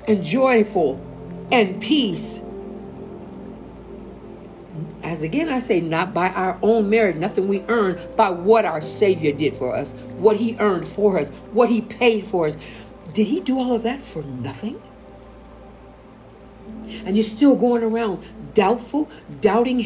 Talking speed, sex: 145 wpm, female